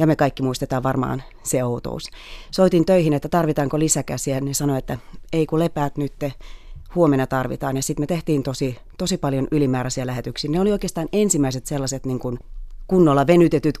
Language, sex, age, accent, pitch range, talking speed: Finnish, female, 30-49, native, 135-160 Hz, 170 wpm